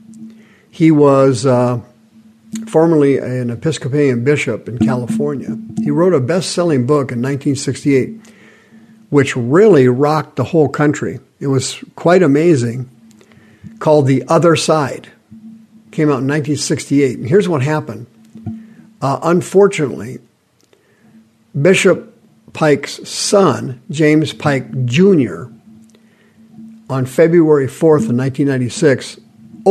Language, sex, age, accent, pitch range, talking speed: English, male, 50-69, American, 130-200 Hz, 105 wpm